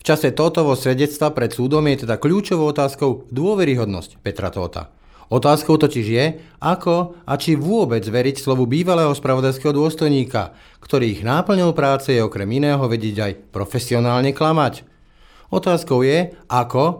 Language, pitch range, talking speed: Slovak, 115-150 Hz, 140 wpm